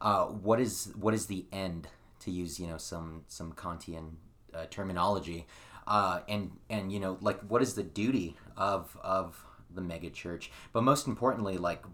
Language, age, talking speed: English, 30-49, 170 wpm